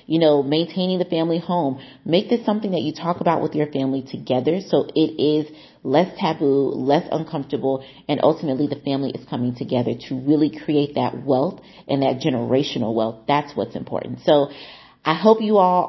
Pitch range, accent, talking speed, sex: 135-170 Hz, American, 180 wpm, female